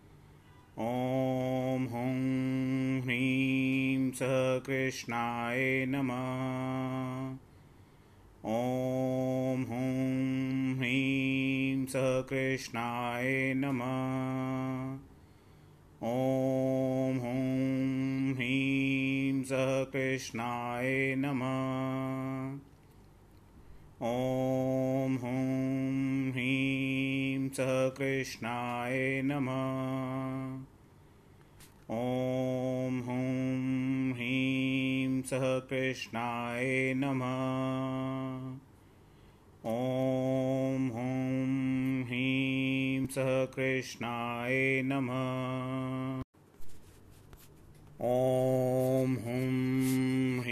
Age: 30-49